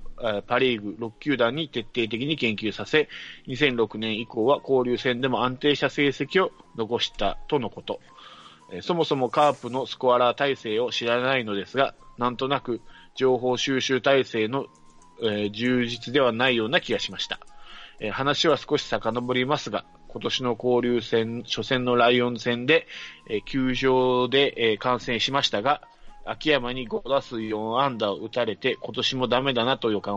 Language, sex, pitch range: Japanese, male, 115-135 Hz